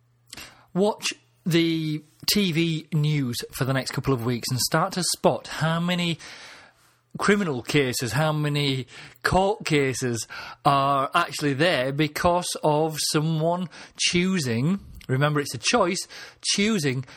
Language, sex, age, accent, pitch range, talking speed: English, male, 30-49, British, 135-170 Hz, 120 wpm